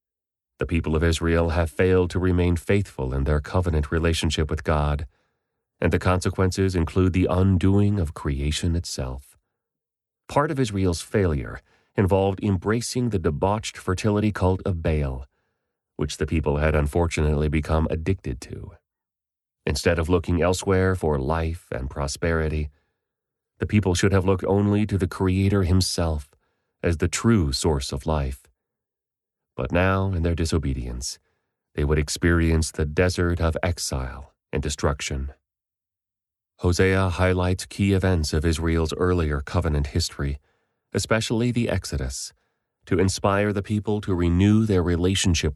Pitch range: 75-95 Hz